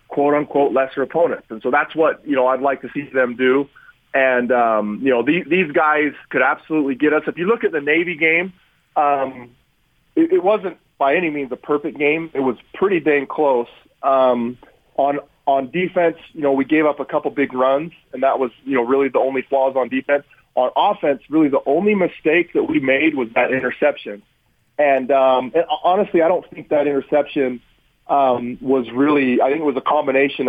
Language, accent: English, American